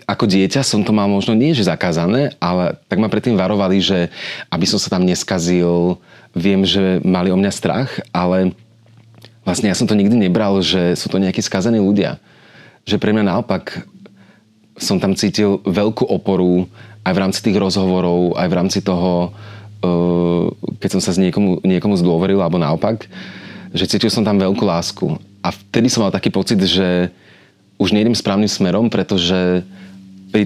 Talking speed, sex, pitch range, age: 165 wpm, male, 90-105 Hz, 30-49